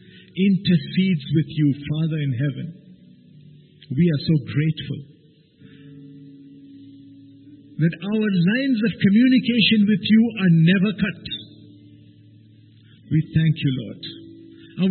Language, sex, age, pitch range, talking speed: English, male, 50-69, 145-210 Hz, 100 wpm